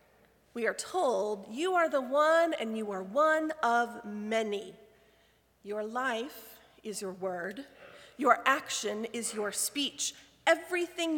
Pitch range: 215-290 Hz